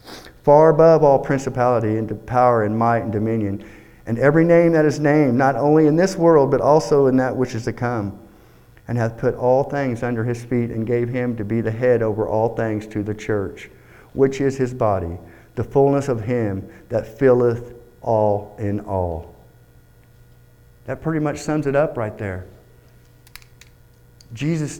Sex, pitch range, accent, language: male, 110-145 Hz, American, English